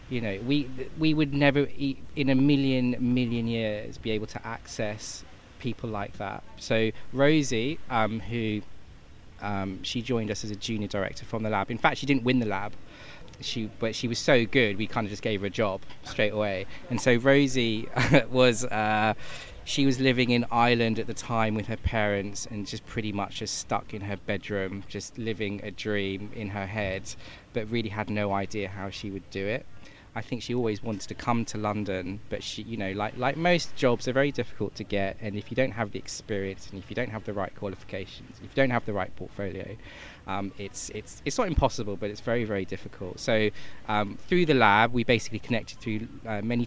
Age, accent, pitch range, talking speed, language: 20-39, British, 100-120 Hz, 210 wpm, English